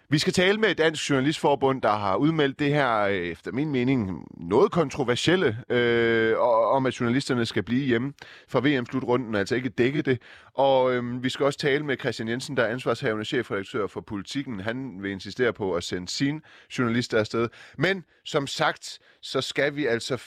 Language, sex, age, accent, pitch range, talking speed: Danish, male, 30-49, native, 105-140 Hz, 180 wpm